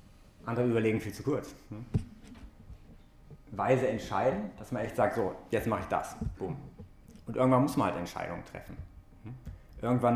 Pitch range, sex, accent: 95-120 Hz, male, German